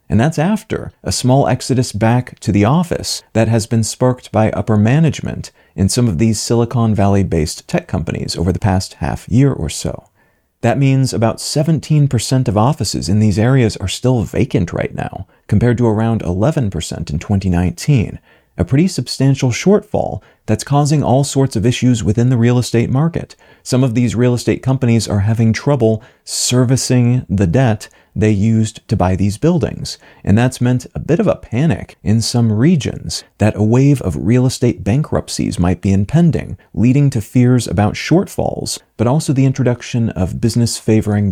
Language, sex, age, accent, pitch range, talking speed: English, male, 40-59, American, 105-130 Hz, 170 wpm